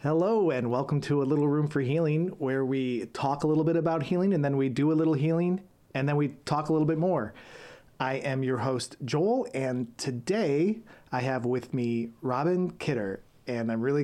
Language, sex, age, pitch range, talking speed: English, male, 30-49, 110-135 Hz, 205 wpm